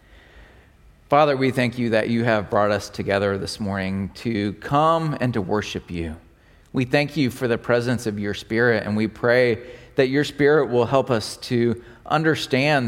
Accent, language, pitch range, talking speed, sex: American, English, 115-155 Hz, 175 wpm, male